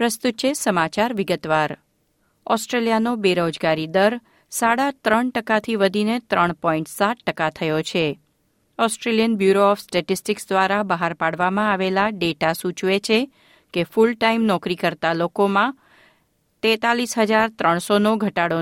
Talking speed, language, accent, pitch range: 110 wpm, Gujarati, native, 175-230 Hz